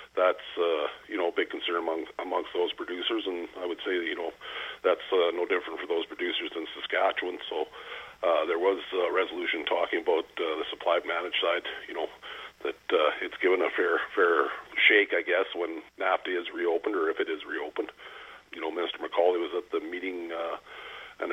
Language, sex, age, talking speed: English, male, 40-59, 200 wpm